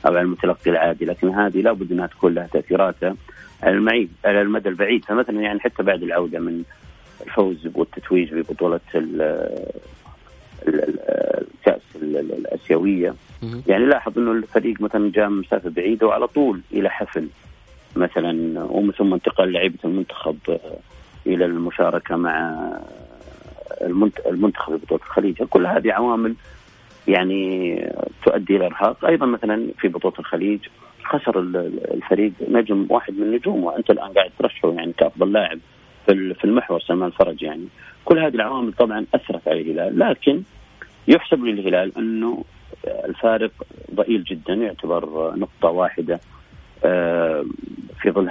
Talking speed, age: 125 wpm, 40-59